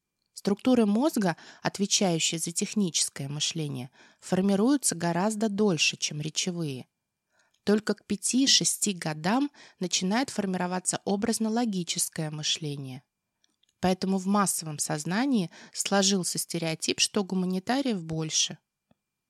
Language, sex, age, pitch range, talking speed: Russian, female, 20-39, 165-215 Hz, 85 wpm